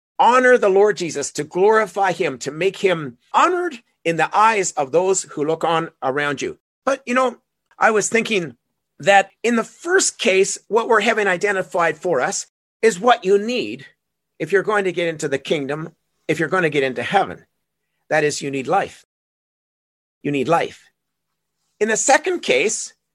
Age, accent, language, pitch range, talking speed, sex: 40-59, American, English, 170-245 Hz, 180 wpm, male